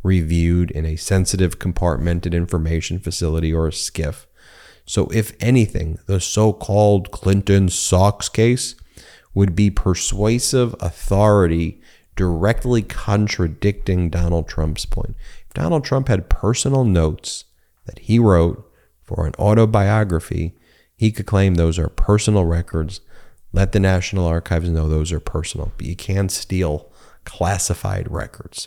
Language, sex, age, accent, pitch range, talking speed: English, male, 30-49, American, 85-105 Hz, 125 wpm